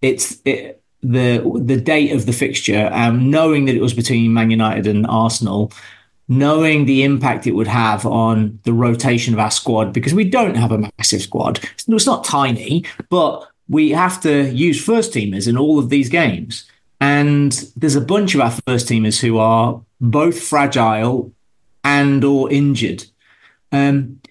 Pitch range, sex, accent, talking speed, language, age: 115-145 Hz, male, British, 170 wpm, English, 30-49